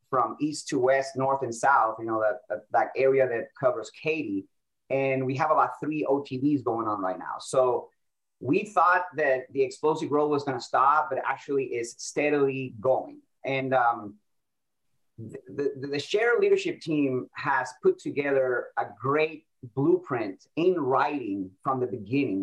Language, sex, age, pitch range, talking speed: English, male, 30-49, 130-170 Hz, 165 wpm